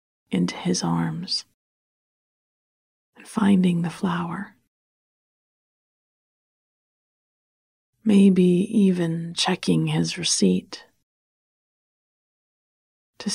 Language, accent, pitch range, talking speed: English, American, 160-195 Hz, 60 wpm